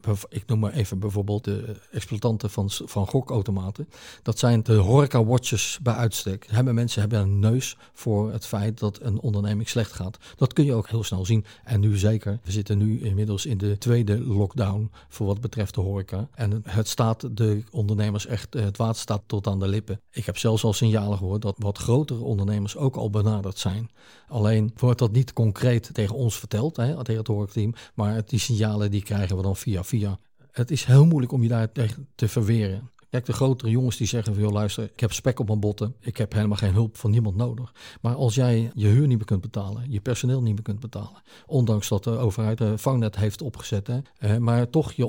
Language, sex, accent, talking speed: Dutch, male, Dutch, 210 wpm